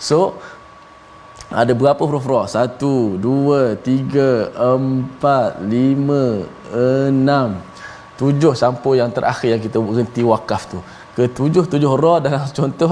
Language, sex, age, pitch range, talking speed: Malayalam, male, 20-39, 110-140 Hz, 110 wpm